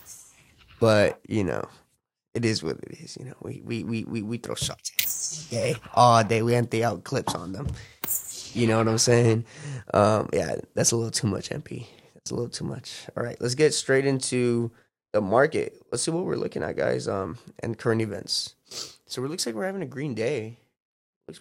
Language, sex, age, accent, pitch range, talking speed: English, male, 20-39, American, 110-130 Hz, 205 wpm